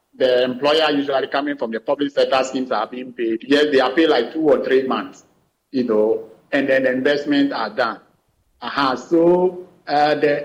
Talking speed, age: 190 wpm, 50-69